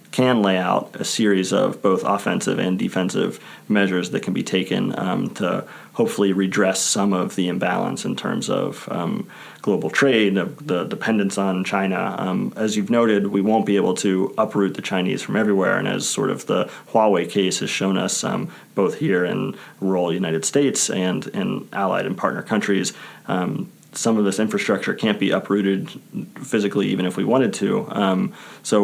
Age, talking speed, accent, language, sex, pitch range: 30-49, 180 wpm, American, English, male, 95-105 Hz